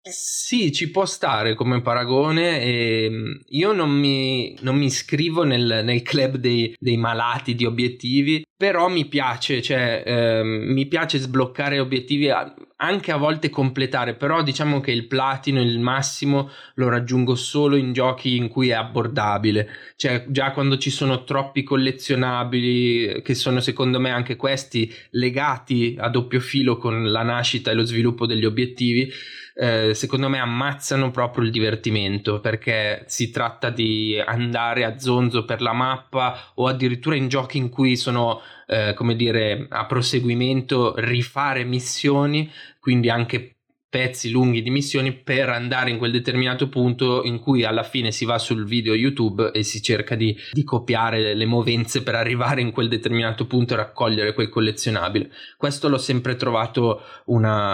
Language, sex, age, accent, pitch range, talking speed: Italian, male, 20-39, native, 115-135 Hz, 155 wpm